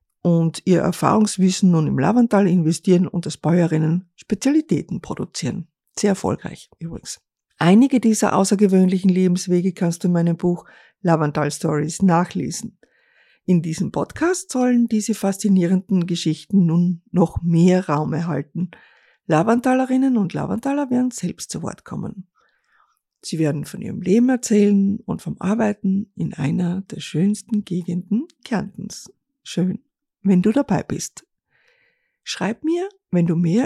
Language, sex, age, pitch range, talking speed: German, female, 50-69, 175-220 Hz, 130 wpm